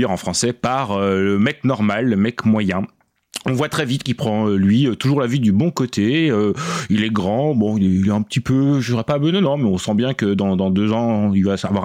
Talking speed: 270 wpm